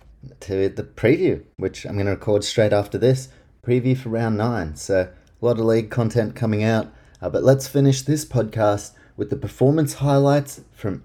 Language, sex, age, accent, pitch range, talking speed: English, male, 30-49, Australian, 110-140 Hz, 185 wpm